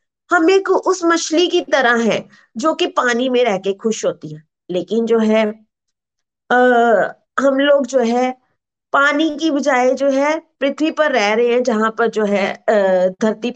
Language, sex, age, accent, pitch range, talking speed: Hindi, female, 20-39, native, 220-275 Hz, 170 wpm